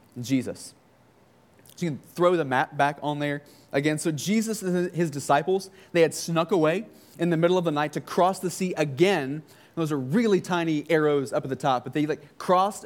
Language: English